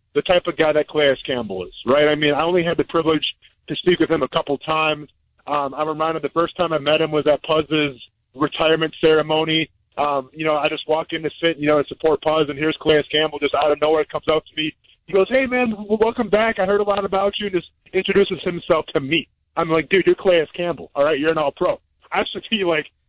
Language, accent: English, American